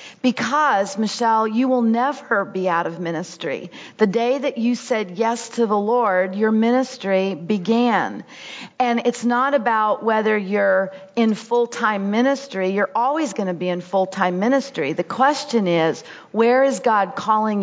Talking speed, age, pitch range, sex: 155 wpm, 40-59, 205-250 Hz, female